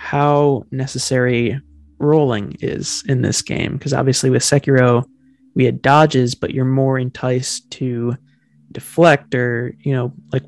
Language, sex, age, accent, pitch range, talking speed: English, male, 20-39, American, 120-140 Hz, 135 wpm